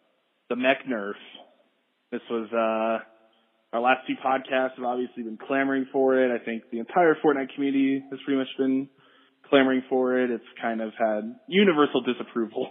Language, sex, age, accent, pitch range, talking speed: English, male, 20-39, American, 115-140 Hz, 165 wpm